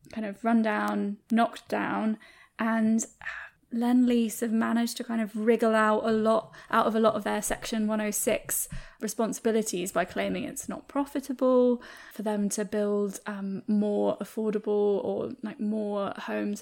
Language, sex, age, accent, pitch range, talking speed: English, female, 10-29, British, 210-240 Hz, 150 wpm